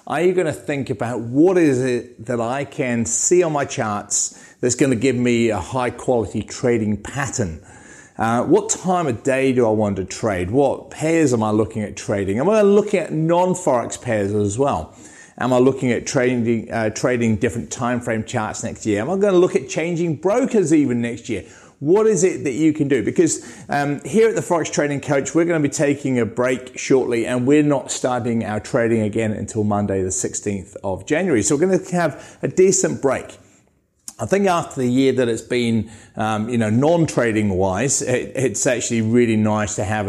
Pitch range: 105-145 Hz